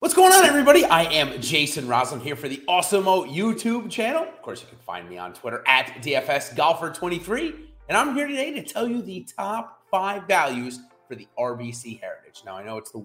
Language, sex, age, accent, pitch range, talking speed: English, male, 30-49, American, 120-200 Hz, 210 wpm